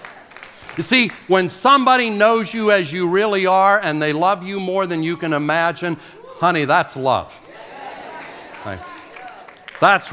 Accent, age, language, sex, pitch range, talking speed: American, 60-79, English, male, 140-200 Hz, 135 wpm